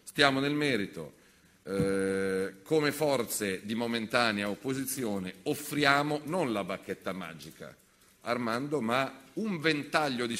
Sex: male